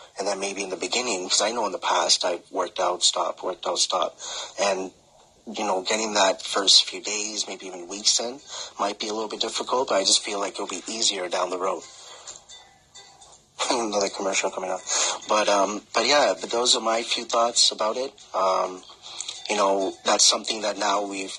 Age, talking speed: 30-49, 200 wpm